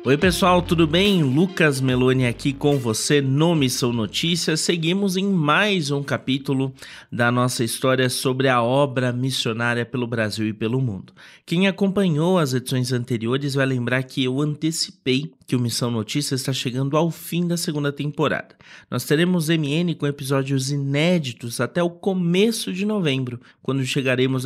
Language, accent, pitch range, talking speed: Portuguese, Brazilian, 120-165 Hz, 155 wpm